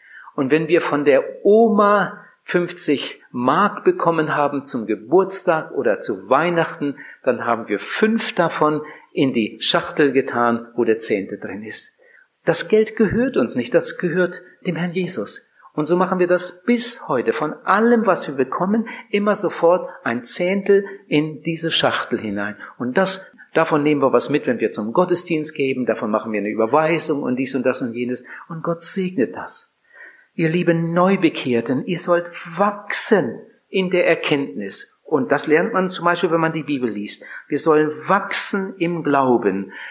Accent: German